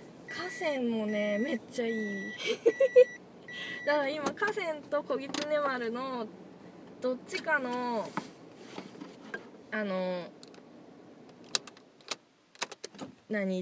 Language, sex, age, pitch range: Japanese, female, 20-39, 205-300 Hz